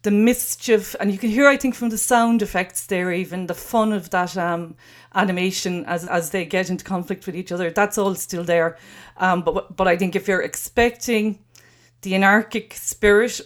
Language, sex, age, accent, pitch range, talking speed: English, female, 40-59, Irish, 165-205 Hz, 195 wpm